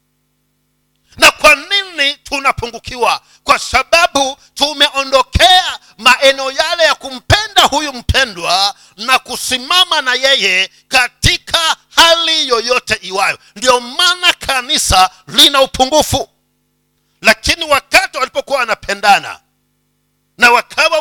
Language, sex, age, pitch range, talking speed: Swahili, male, 50-69, 200-295 Hz, 90 wpm